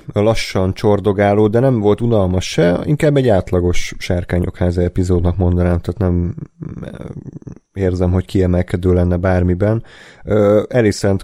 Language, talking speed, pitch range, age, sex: Hungarian, 110 wpm, 90-105 Hz, 30-49, male